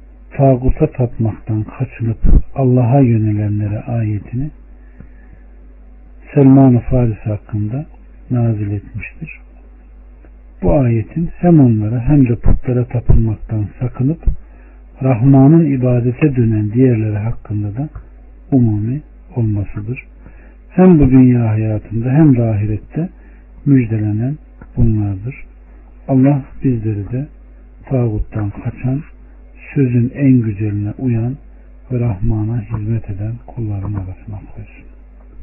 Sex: male